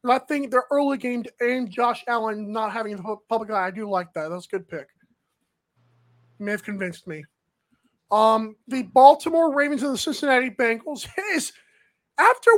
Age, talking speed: 20-39, 170 wpm